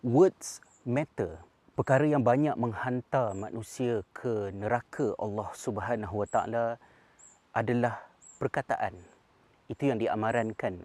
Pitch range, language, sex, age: 105-120 Hz, Malay, male, 30-49